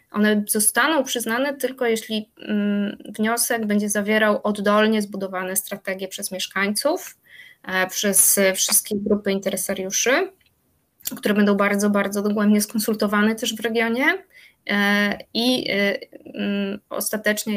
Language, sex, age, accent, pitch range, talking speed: Polish, female, 20-39, native, 195-225 Hz, 95 wpm